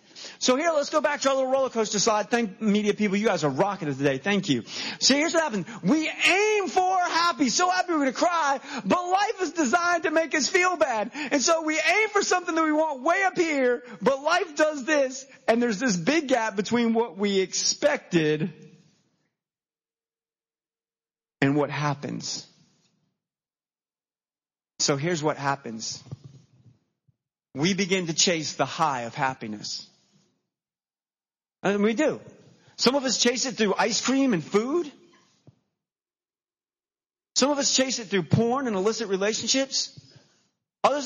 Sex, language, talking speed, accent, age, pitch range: male, English, 160 wpm, American, 30-49, 200-300 Hz